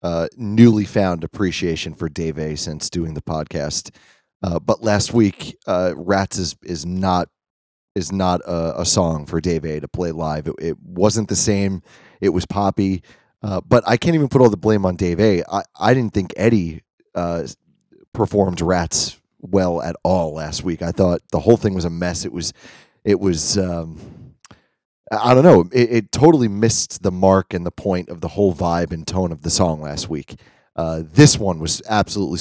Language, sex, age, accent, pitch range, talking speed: English, male, 30-49, American, 85-105 Hz, 195 wpm